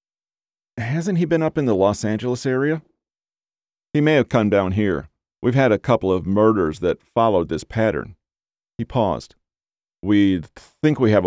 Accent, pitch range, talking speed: American, 100-130 Hz, 165 wpm